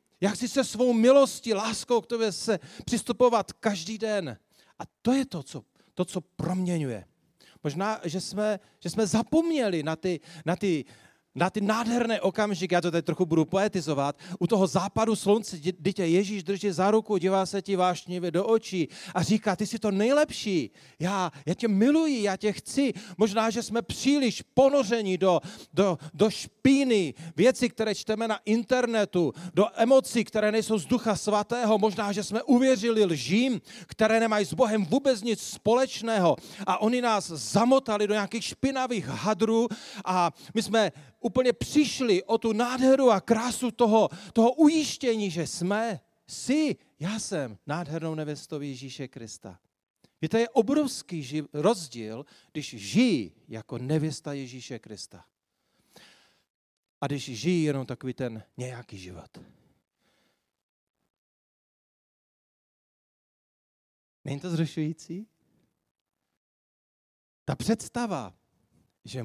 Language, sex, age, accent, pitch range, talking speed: Czech, male, 40-59, native, 165-225 Hz, 135 wpm